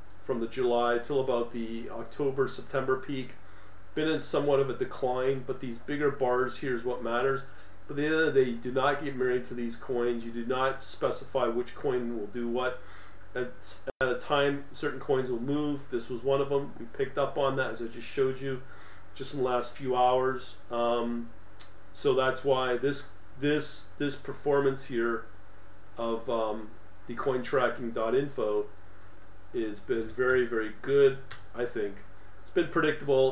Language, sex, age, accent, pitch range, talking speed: English, male, 40-59, American, 110-135 Hz, 180 wpm